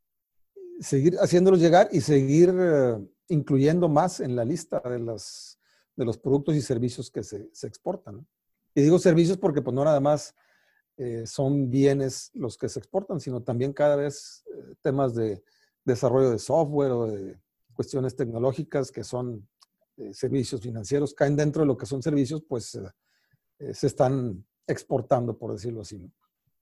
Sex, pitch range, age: male, 120-155 Hz, 50-69